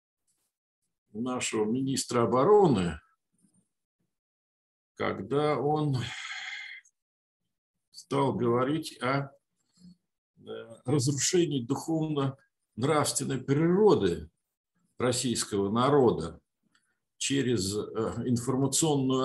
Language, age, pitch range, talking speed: Russian, 50-69, 120-165 Hz, 45 wpm